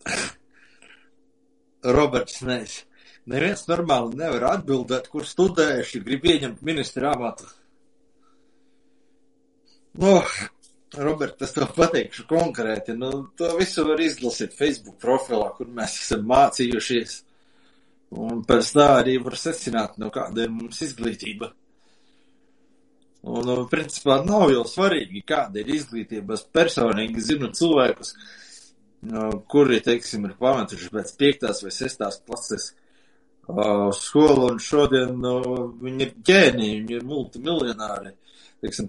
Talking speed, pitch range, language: 105 wpm, 110-140 Hz, English